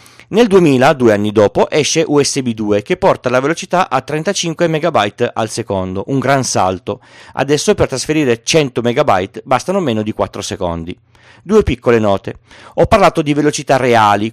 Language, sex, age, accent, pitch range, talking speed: Italian, male, 30-49, native, 115-170 Hz, 160 wpm